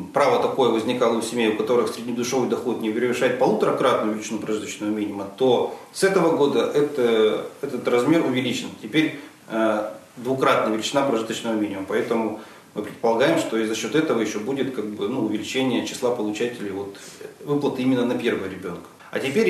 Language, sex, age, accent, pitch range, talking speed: Russian, male, 40-59, native, 110-150 Hz, 150 wpm